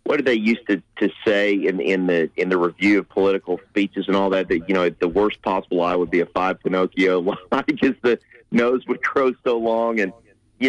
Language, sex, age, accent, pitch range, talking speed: English, male, 40-59, American, 100-130 Hz, 230 wpm